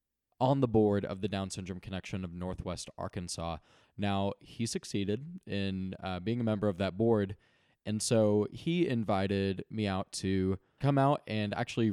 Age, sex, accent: 20-39, male, American